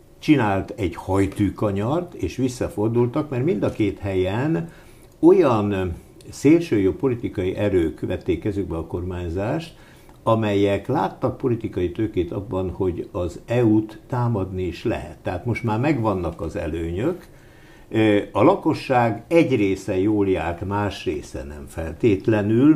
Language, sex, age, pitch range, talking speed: Hungarian, male, 60-79, 95-125 Hz, 120 wpm